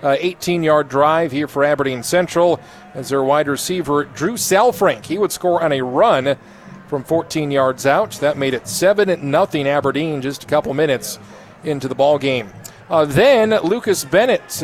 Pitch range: 140-180 Hz